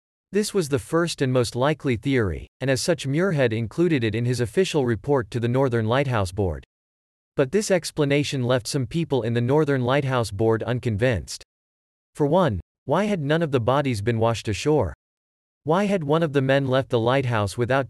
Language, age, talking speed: English, 40-59, 190 wpm